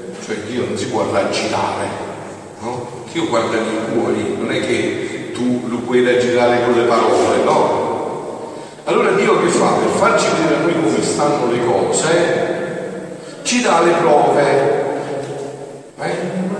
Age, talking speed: 40-59, 145 wpm